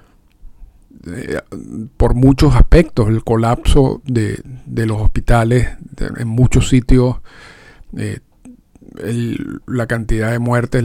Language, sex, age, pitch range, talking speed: Spanish, male, 50-69, 110-135 Hz, 100 wpm